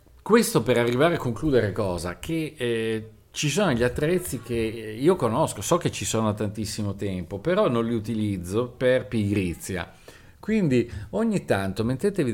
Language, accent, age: Italian, native, 50-69